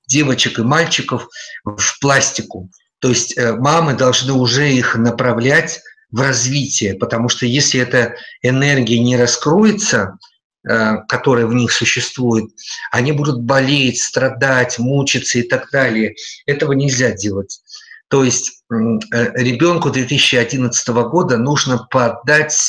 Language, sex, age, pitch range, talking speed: Russian, male, 50-69, 120-145 Hz, 115 wpm